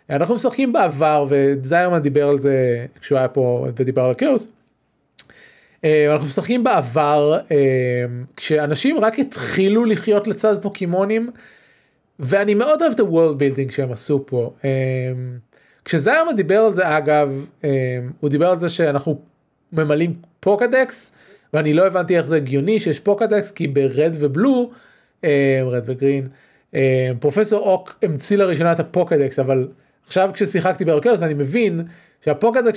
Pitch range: 140-195 Hz